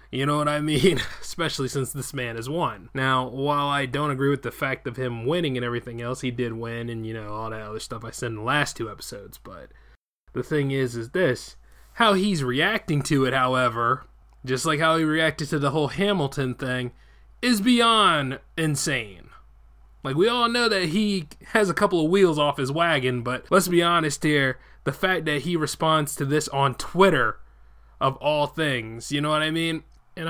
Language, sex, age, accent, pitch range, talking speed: English, male, 20-39, American, 125-160 Hz, 205 wpm